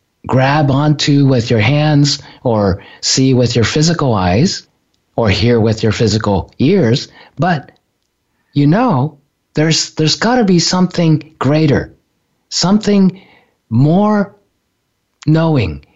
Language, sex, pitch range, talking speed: English, male, 120-155 Hz, 115 wpm